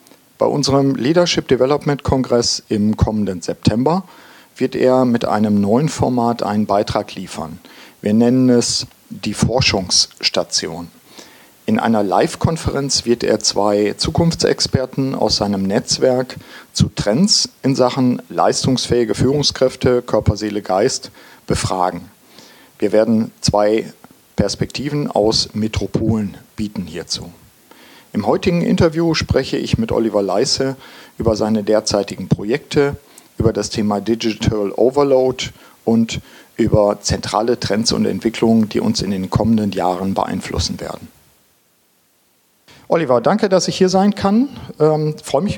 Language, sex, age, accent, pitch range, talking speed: German, male, 50-69, German, 110-155 Hz, 120 wpm